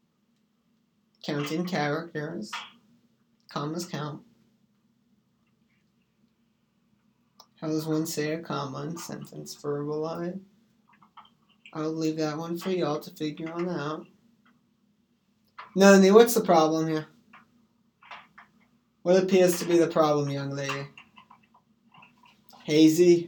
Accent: American